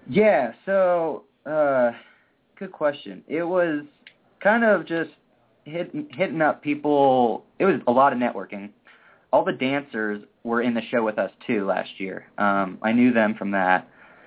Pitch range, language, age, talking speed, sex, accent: 105-135 Hz, English, 20-39, 155 wpm, male, American